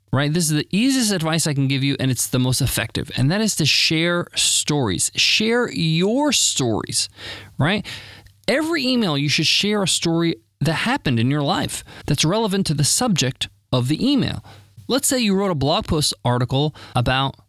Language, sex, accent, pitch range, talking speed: English, male, American, 125-180 Hz, 185 wpm